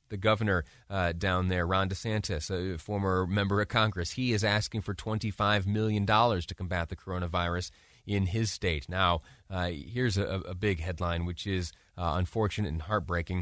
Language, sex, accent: English, male, American